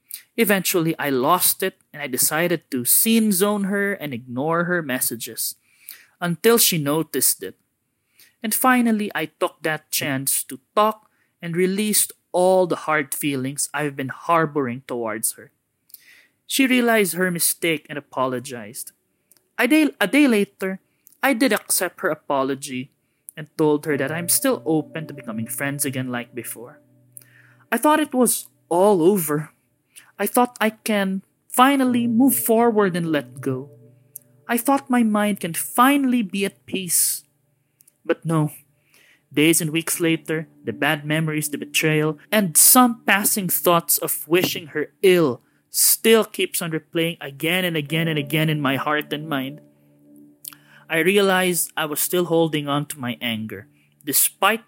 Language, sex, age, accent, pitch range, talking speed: English, male, 20-39, Filipino, 140-195 Hz, 150 wpm